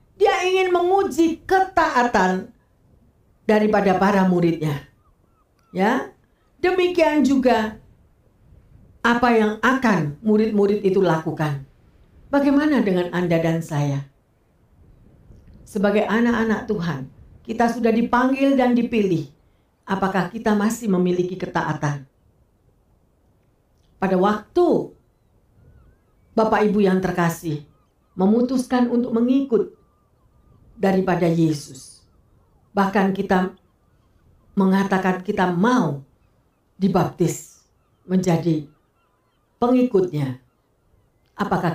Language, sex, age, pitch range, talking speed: Indonesian, female, 50-69, 155-240 Hz, 80 wpm